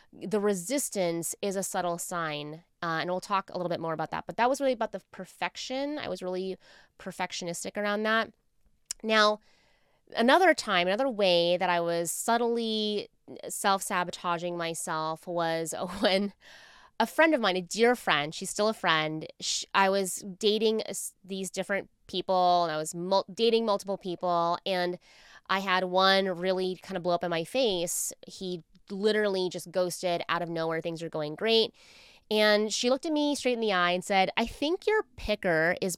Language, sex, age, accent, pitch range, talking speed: English, female, 20-39, American, 175-230 Hz, 180 wpm